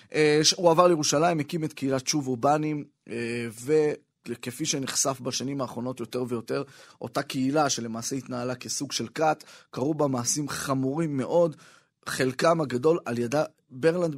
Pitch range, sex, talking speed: 130-160 Hz, male, 130 wpm